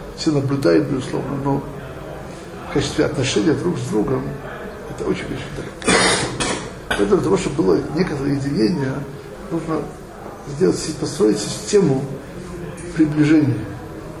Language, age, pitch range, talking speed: Russian, 60-79, 140-175 Hz, 110 wpm